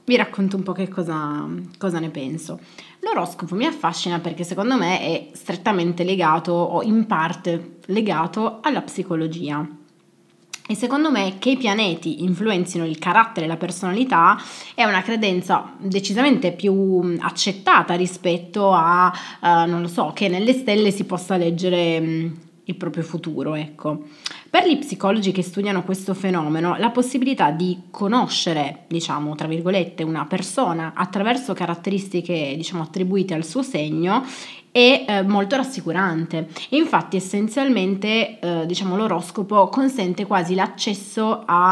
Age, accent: 20-39, native